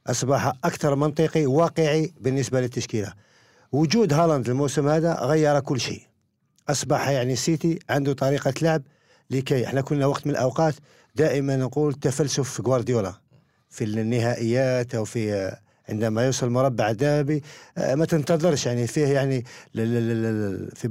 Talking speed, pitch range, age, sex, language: 125 wpm, 120-150 Hz, 50-69, male, Arabic